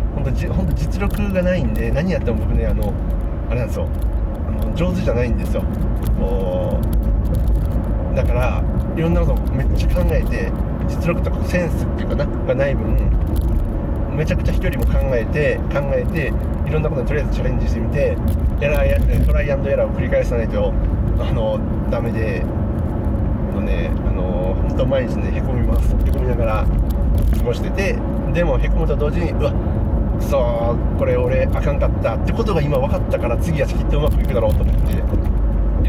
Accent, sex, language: native, male, Japanese